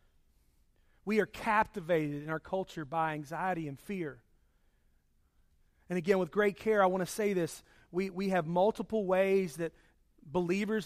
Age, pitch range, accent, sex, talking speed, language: 40-59, 125-200 Hz, American, male, 150 wpm, English